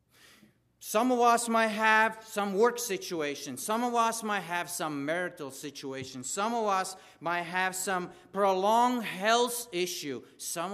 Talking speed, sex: 145 wpm, male